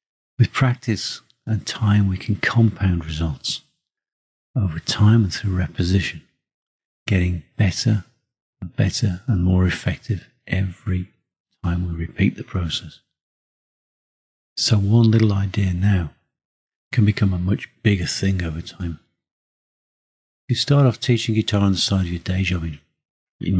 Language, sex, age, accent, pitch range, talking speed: English, male, 50-69, British, 90-110 Hz, 135 wpm